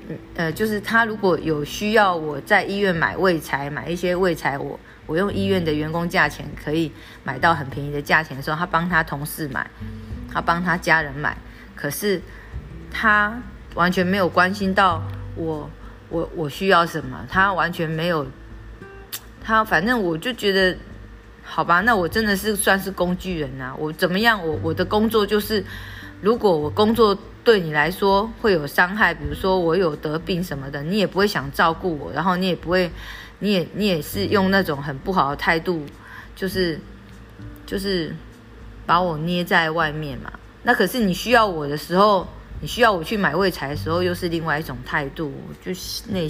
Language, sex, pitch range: Chinese, female, 145-190 Hz